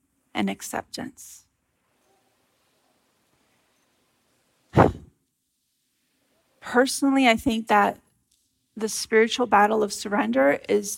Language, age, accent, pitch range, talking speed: English, 30-49, American, 215-245 Hz, 65 wpm